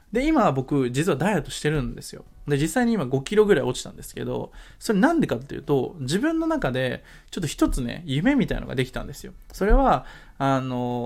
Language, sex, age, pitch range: Japanese, male, 20-39, 130-220 Hz